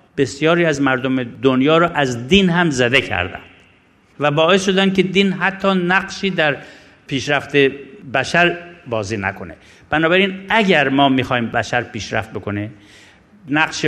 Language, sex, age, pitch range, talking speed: Persian, male, 50-69, 110-150 Hz, 130 wpm